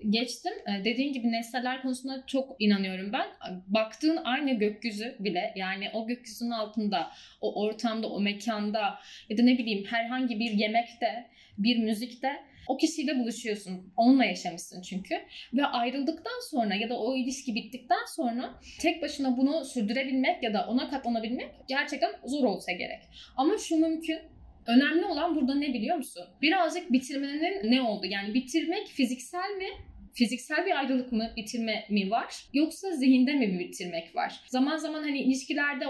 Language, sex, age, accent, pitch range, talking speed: Turkish, female, 10-29, native, 230-310 Hz, 150 wpm